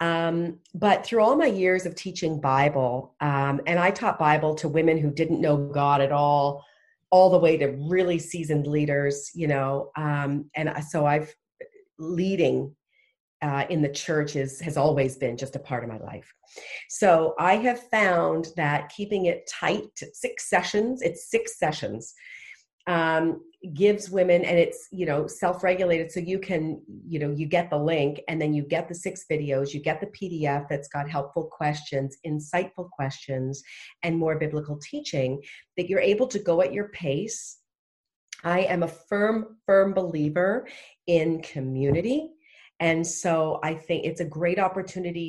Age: 40-59